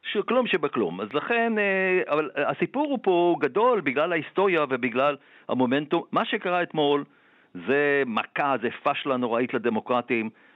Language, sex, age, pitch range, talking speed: Hebrew, male, 50-69, 130-170 Hz, 125 wpm